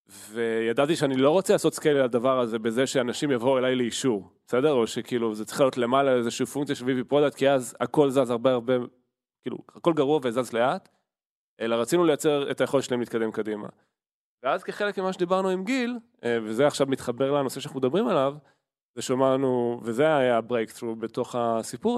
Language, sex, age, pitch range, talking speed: Hebrew, male, 20-39, 120-150 Hz, 175 wpm